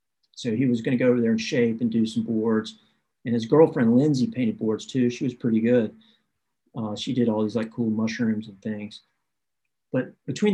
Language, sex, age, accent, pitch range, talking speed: English, male, 50-69, American, 115-135 Hz, 210 wpm